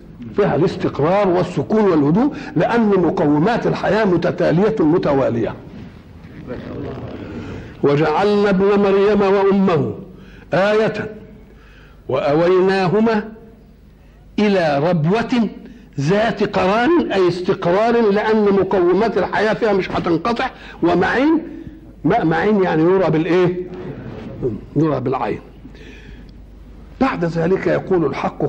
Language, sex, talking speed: Arabic, male, 80 wpm